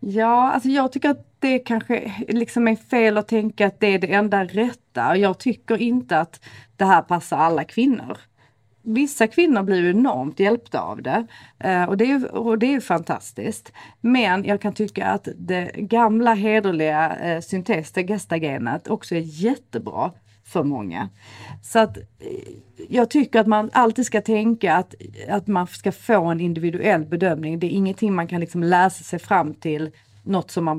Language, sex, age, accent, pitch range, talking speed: Swedish, female, 40-59, native, 170-225 Hz, 170 wpm